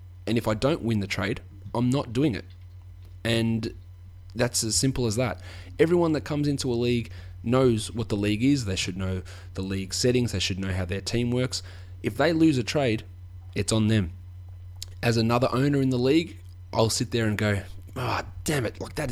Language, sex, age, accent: English, male, 20-39, Australian